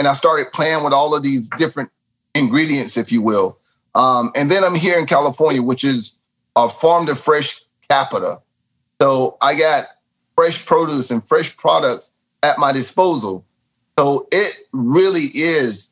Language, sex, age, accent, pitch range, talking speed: English, male, 30-49, American, 130-165 Hz, 160 wpm